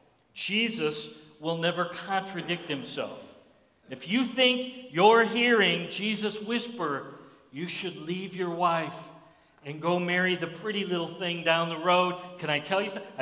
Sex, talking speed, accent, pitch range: male, 145 wpm, American, 180-245 Hz